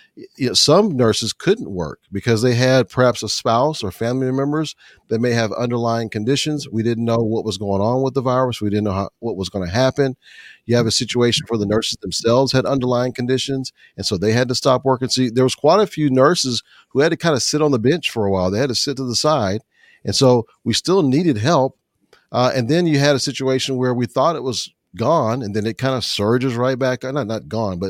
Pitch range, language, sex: 110-135 Hz, English, male